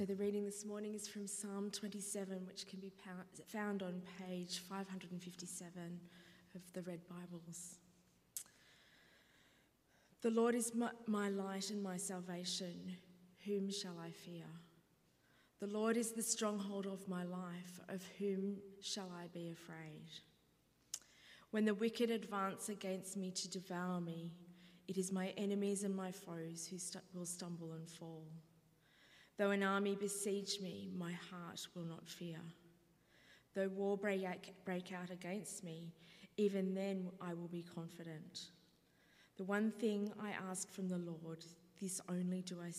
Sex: female